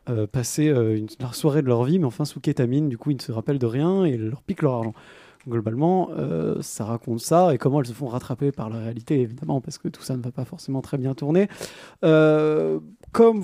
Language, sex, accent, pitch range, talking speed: French, male, French, 125-165 Hz, 240 wpm